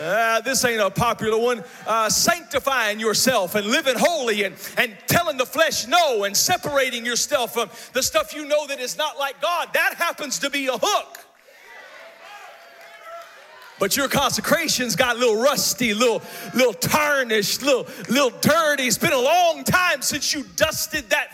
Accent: American